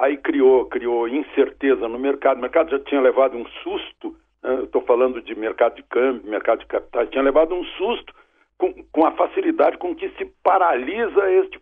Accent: Brazilian